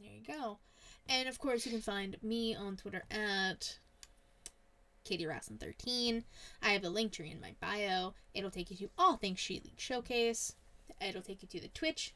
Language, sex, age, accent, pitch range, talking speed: English, female, 10-29, American, 185-230 Hz, 190 wpm